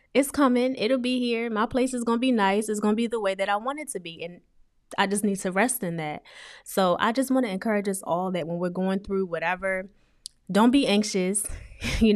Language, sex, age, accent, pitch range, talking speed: English, female, 20-39, American, 170-215 Hz, 245 wpm